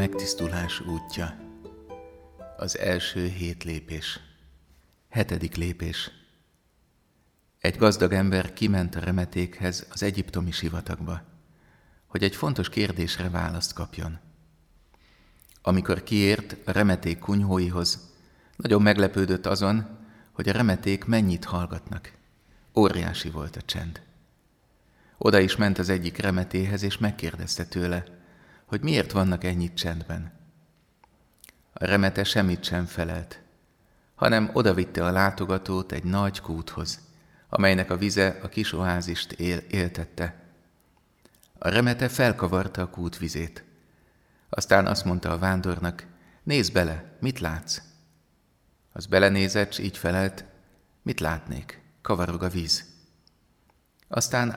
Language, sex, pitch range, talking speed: Hungarian, male, 85-100 Hz, 110 wpm